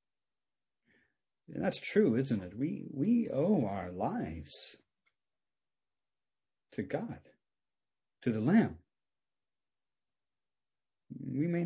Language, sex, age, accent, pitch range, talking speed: English, male, 40-59, American, 110-150 Hz, 80 wpm